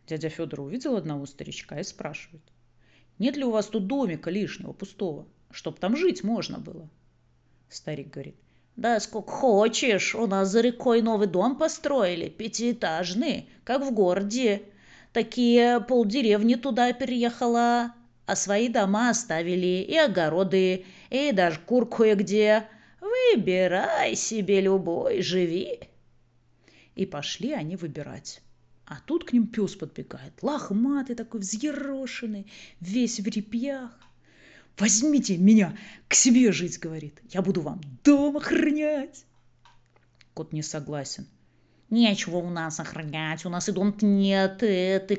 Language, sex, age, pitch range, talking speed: Russian, female, 30-49, 170-245 Hz, 125 wpm